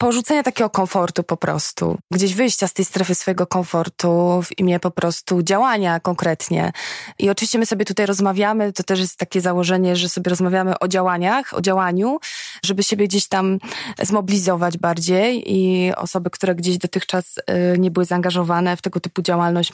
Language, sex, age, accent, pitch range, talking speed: Polish, female, 20-39, native, 180-215 Hz, 165 wpm